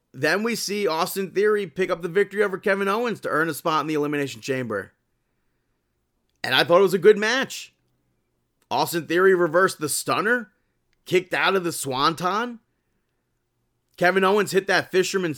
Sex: male